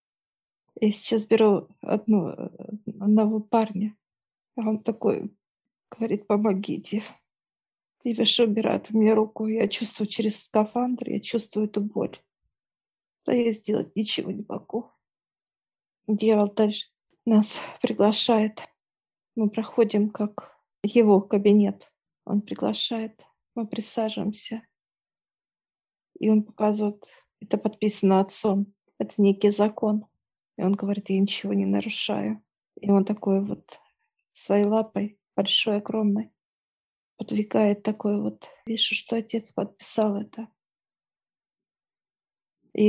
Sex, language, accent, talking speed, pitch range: female, Russian, native, 105 wpm, 205-220 Hz